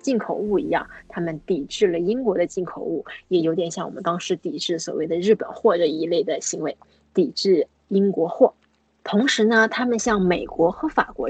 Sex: female